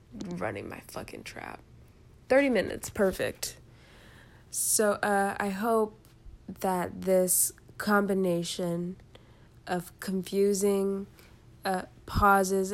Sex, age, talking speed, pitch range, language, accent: female, 20-39, 85 wpm, 115-195 Hz, English, American